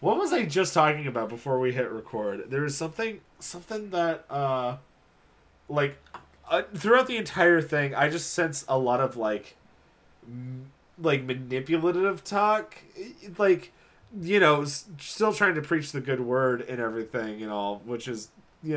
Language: English